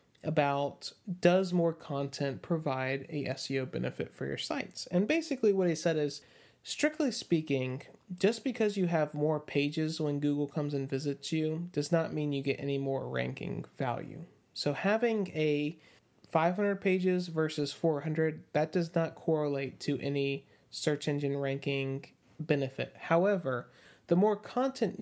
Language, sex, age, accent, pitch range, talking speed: English, male, 30-49, American, 140-170 Hz, 145 wpm